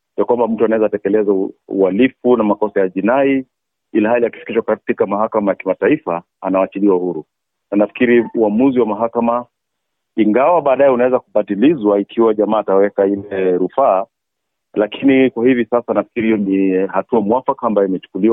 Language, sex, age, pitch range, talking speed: Swahili, male, 40-59, 100-125 Hz, 145 wpm